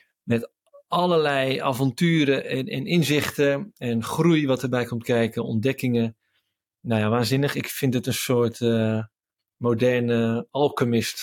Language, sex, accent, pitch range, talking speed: Dutch, male, Dutch, 115-140 Hz, 130 wpm